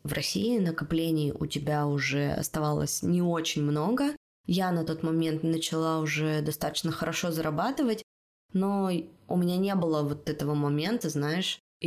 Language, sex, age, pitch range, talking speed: Russian, female, 20-39, 155-190 Hz, 140 wpm